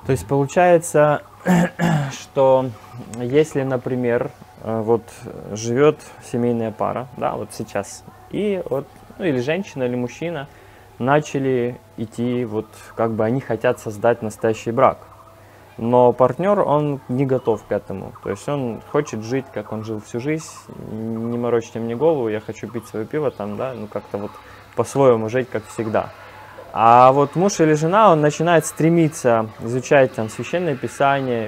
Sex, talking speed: male, 145 wpm